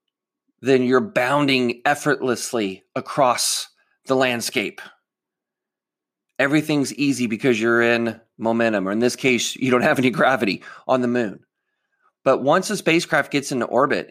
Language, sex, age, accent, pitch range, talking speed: English, male, 30-49, American, 125-150 Hz, 135 wpm